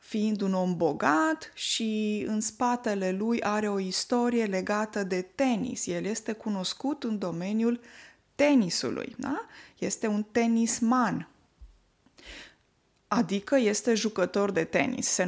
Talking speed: 120 wpm